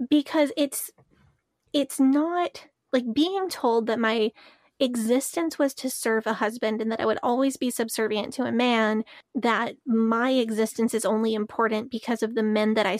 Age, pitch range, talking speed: 20-39, 220-265 Hz, 170 wpm